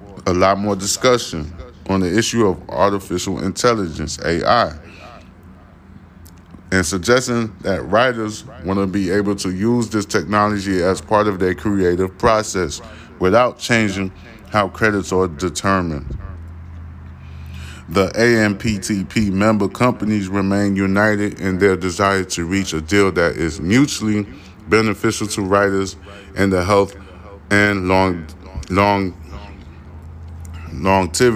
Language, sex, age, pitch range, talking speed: English, male, 20-39, 85-100 Hz, 115 wpm